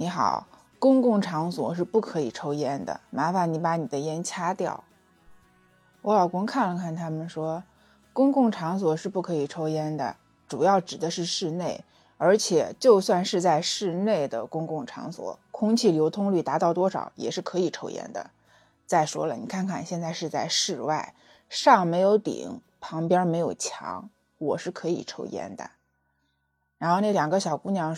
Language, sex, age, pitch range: Chinese, female, 20-39, 160-220 Hz